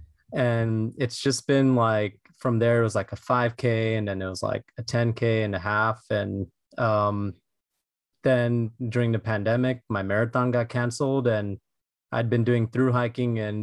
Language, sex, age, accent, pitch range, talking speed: English, male, 20-39, American, 105-120 Hz, 170 wpm